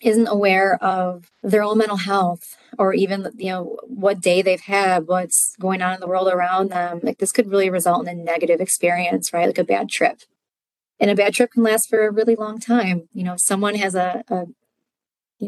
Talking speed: 215 wpm